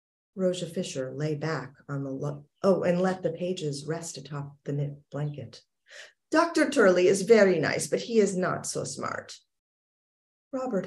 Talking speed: 160 wpm